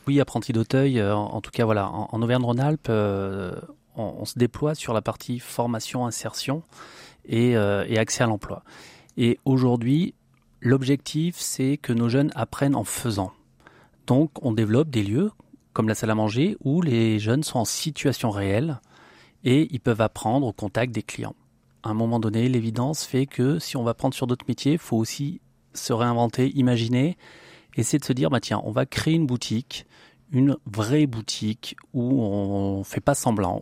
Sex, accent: male, French